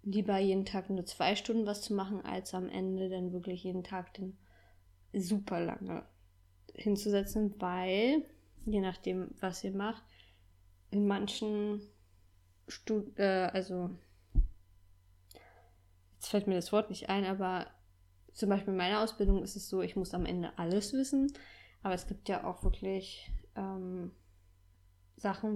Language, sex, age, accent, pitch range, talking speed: German, female, 20-39, German, 175-205 Hz, 140 wpm